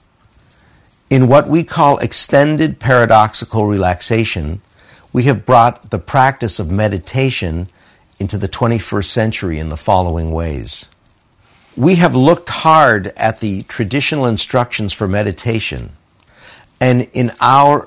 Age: 50-69